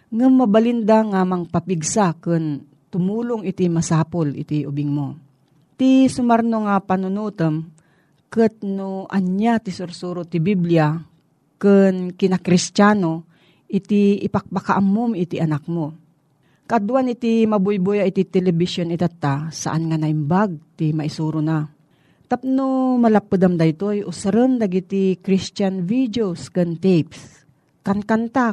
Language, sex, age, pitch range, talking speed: Filipino, female, 40-59, 165-210 Hz, 115 wpm